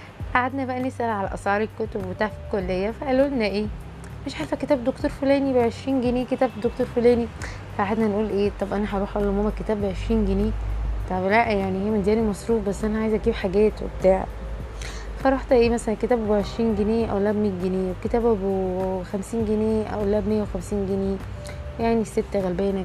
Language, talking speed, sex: Arabic, 180 wpm, female